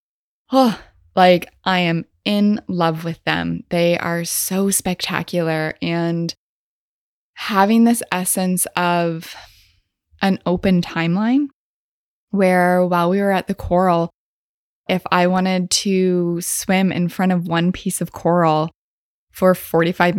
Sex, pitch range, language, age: female, 165-190 Hz, English, 20-39